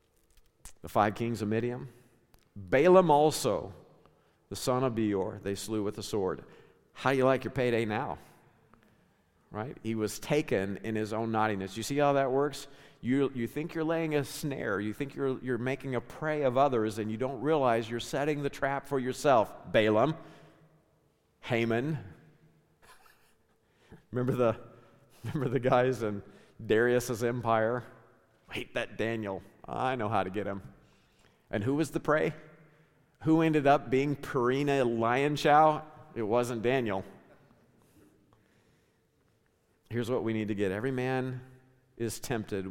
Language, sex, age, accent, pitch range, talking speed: English, male, 50-69, American, 110-140 Hz, 150 wpm